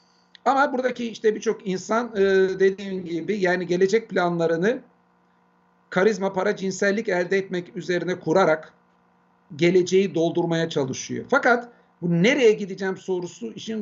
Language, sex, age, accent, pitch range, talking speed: Turkish, male, 50-69, native, 160-195 Hz, 115 wpm